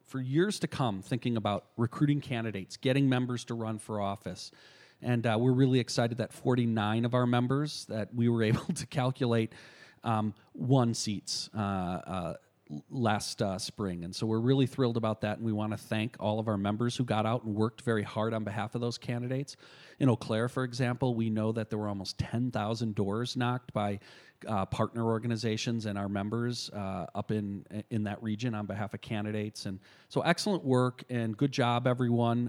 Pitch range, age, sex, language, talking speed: 105-125 Hz, 40-59, male, English, 190 wpm